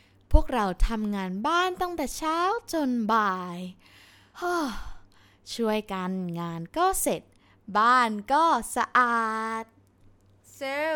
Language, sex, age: Thai, female, 20-39